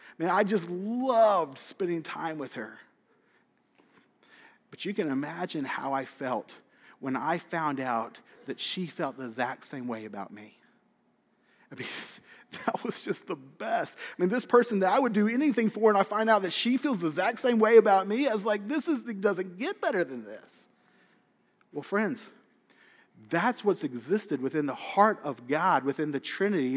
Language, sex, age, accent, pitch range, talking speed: English, male, 40-59, American, 170-225 Hz, 185 wpm